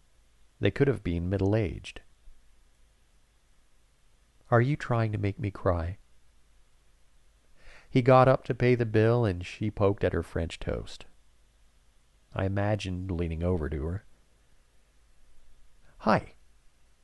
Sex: male